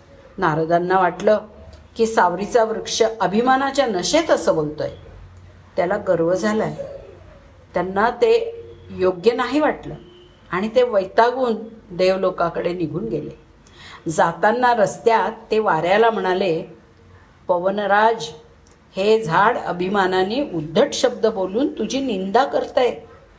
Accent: native